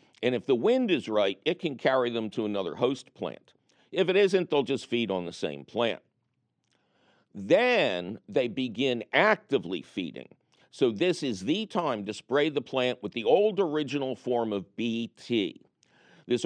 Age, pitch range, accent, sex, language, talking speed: 50-69, 120-170 Hz, American, male, English, 170 wpm